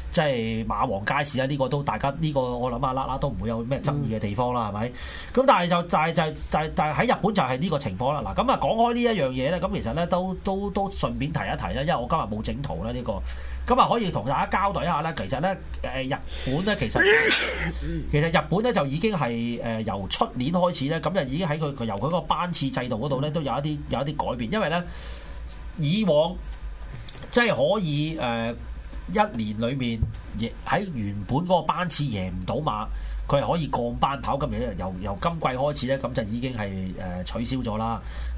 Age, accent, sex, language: 30-49, native, male, Chinese